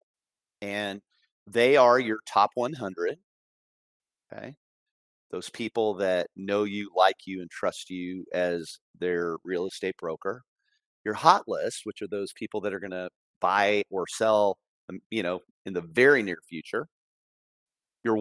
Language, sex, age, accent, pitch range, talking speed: English, male, 40-59, American, 90-115 Hz, 145 wpm